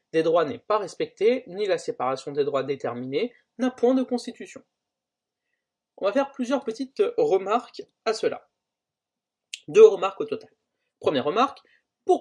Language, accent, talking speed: French, French, 145 wpm